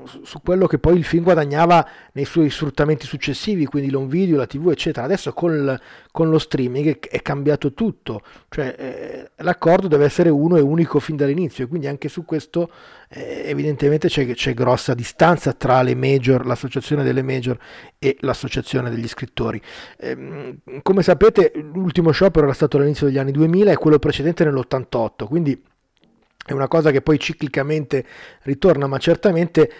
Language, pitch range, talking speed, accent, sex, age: Italian, 135-165 Hz, 165 wpm, native, male, 30-49